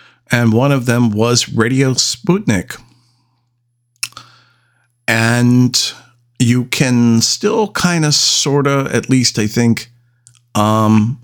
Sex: male